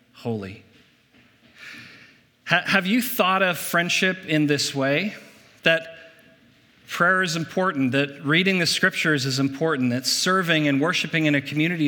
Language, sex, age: English, male, 40-59